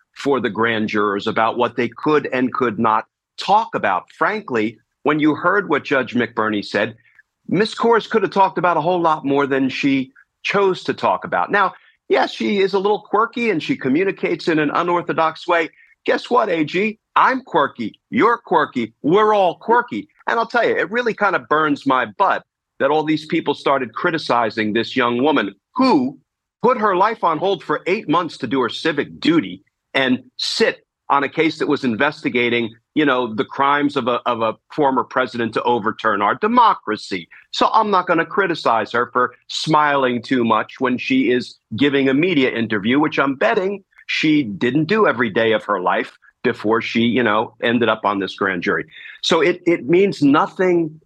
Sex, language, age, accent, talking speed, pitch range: male, English, 40-59, American, 190 wpm, 120-180 Hz